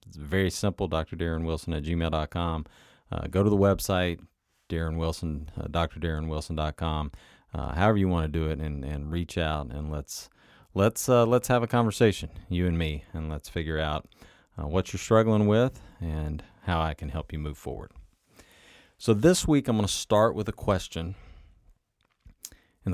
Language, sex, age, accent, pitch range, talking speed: English, male, 40-59, American, 80-105 Hz, 165 wpm